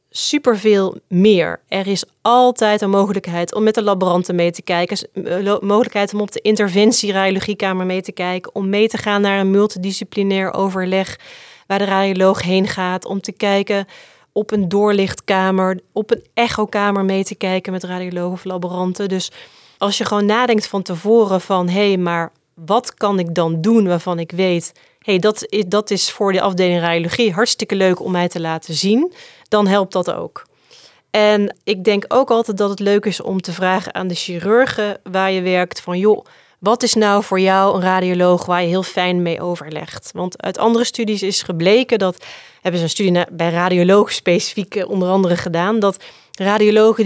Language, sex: Dutch, female